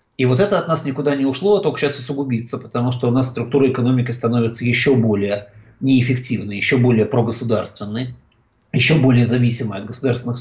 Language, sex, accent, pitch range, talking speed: Russian, male, native, 110-130 Hz, 175 wpm